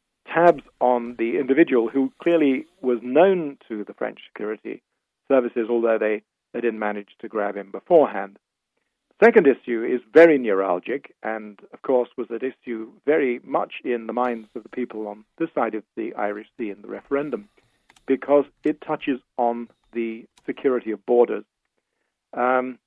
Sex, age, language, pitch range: male, 50-69, English, 115-140 Hz